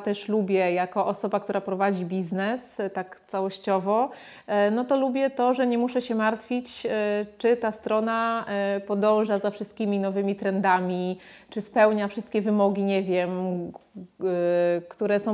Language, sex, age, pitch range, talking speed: Polish, female, 30-49, 190-225 Hz, 135 wpm